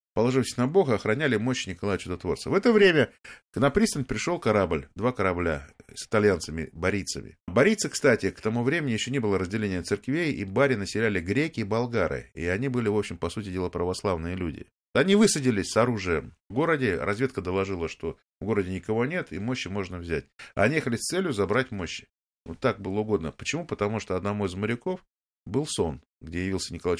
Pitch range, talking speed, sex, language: 85-130 Hz, 185 wpm, male, Russian